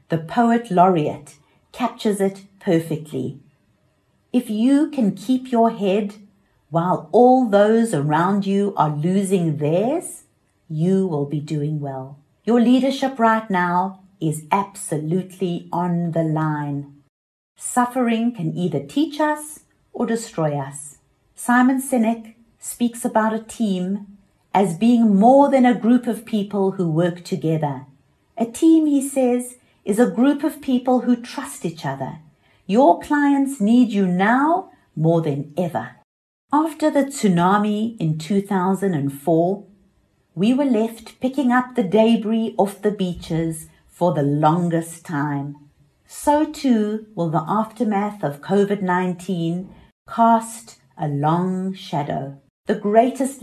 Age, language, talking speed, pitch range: 50-69, English, 125 wpm, 165-235 Hz